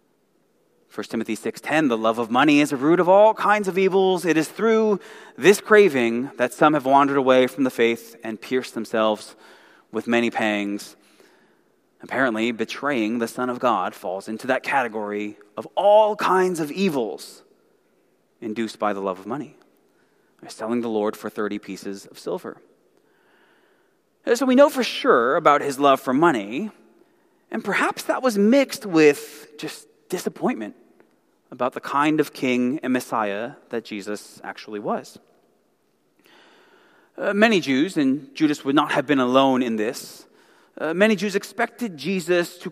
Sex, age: male, 30-49